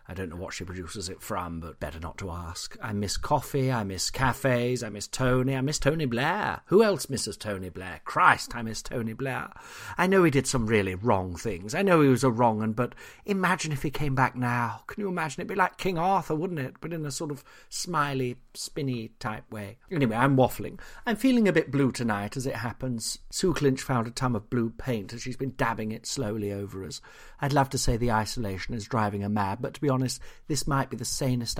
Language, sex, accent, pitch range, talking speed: English, male, British, 115-165 Hz, 235 wpm